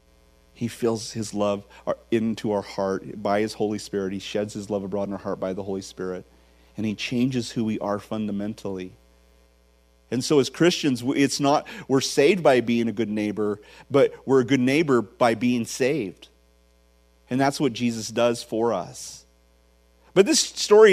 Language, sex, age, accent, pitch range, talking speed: English, male, 40-59, American, 105-155 Hz, 175 wpm